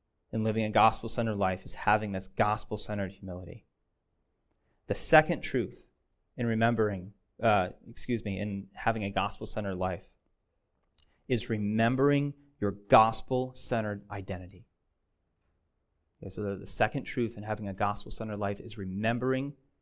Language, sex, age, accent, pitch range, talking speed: English, male, 30-49, American, 100-125 Hz, 120 wpm